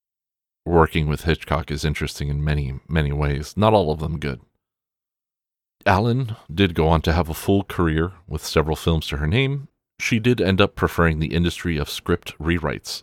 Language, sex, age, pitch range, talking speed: English, male, 40-59, 75-95 Hz, 180 wpm